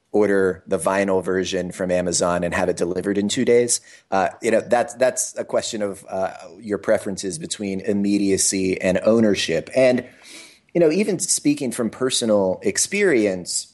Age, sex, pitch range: 30-49, male, 95-115 Hz